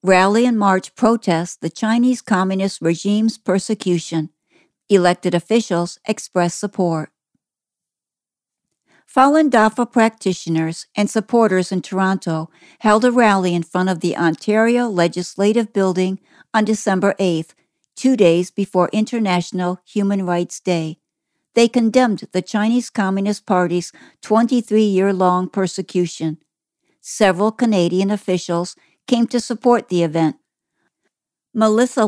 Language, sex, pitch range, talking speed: English, female, 180-220 Hz, 105 wpm